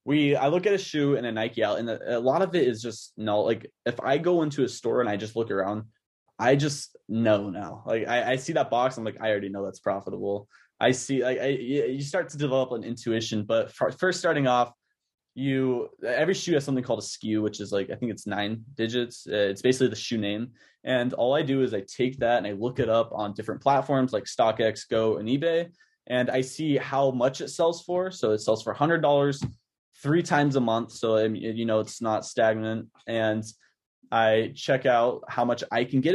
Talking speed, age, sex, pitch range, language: 225 wpm, 20-39, male, 110-135 Hz, English